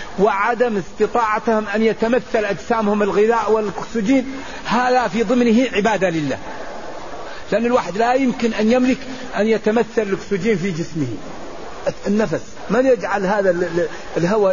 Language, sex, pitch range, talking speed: Arabic, male, 185-230 Hz, 115 wpm